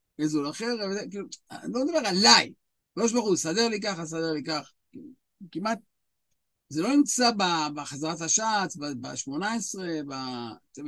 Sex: male